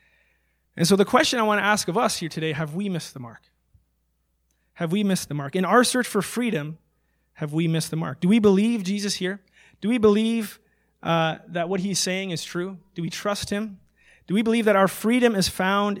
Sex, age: male, 30-49